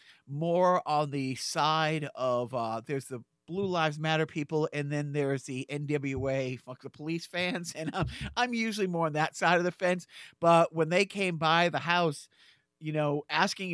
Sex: male